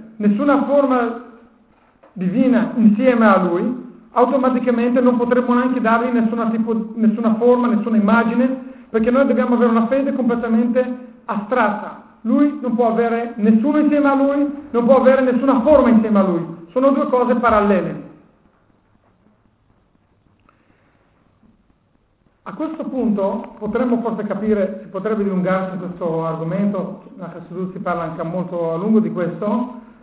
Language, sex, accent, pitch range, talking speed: Italian, male, native, 195-235 Hz, 125 wpm